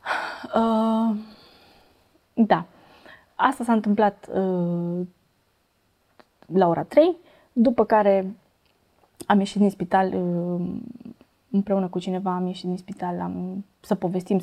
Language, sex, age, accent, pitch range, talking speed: Romanian, female, 20-39, native, 185-240 Hz, 110 wpm